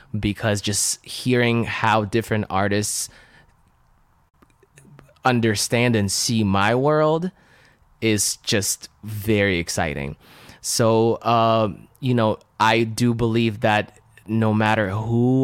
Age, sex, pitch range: 20-39, male, 90-115 Hz